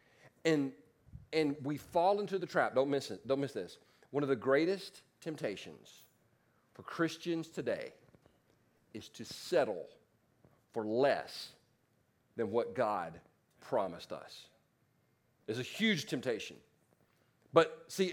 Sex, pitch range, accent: male, 150-220 Hz, American